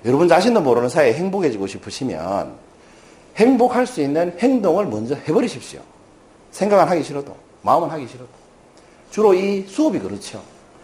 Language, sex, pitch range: Korean, male, 160-240 Hz